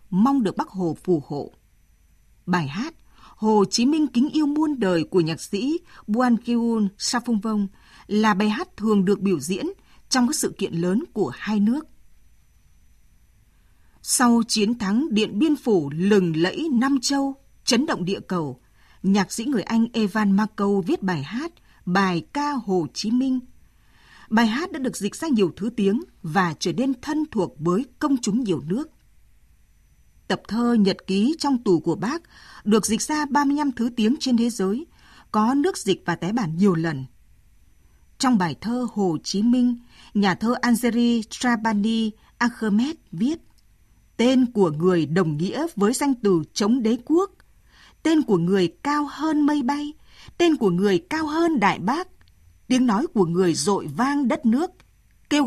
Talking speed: 170 wpm